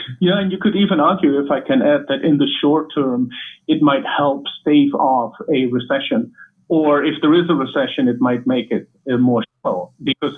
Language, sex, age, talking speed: English, male, 50-69, 210 wpm